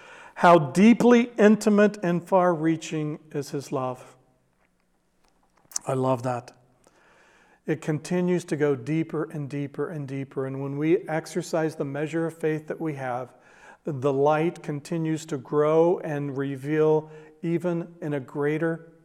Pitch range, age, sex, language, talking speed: 140-175 Hz, 50-69, male, English, 130 wpm